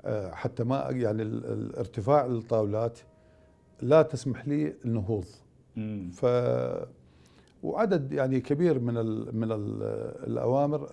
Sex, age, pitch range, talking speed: male, 50-69, 110-140 Hz, 90 wpm